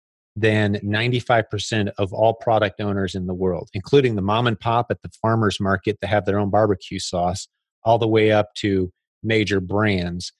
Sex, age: male, 30-49